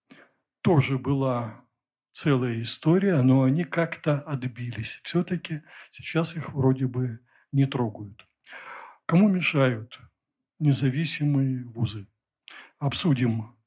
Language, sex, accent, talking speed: Russian, male, native, 90 wpm